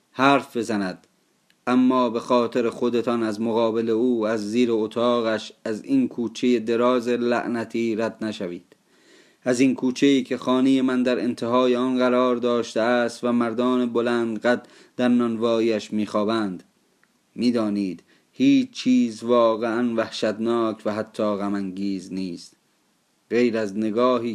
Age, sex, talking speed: 30-49, male, 130 wpm